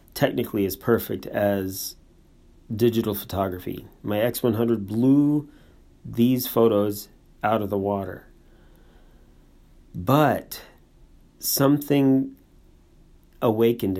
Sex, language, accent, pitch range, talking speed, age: male, English, American, 95-120 Hz, 75 wpm, 40-59